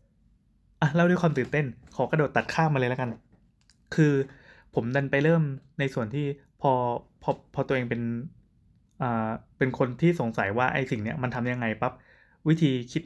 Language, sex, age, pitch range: Thai, male, 20-39, 115-140 Hz